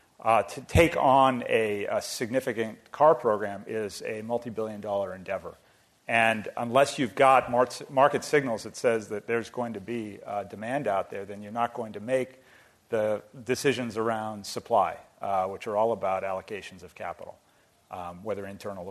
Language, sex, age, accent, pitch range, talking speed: English, male, 40-59, American, 105-120 Hz, 165 wpm